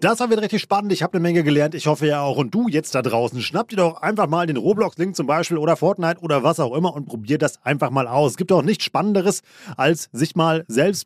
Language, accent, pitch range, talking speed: German, German, 140-180 Hz, 265 wpm